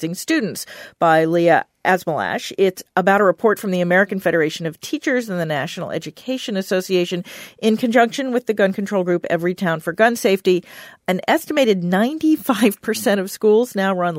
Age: 40-59